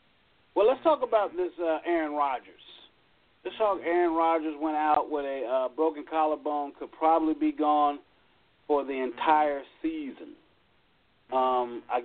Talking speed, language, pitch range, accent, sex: 145 wpm, English, 130-160 Hz, American, male